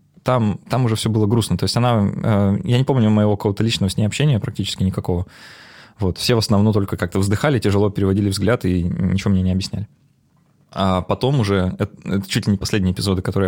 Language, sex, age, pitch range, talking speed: Russian, male, 20-39, 95-115 Hz, 205 wpm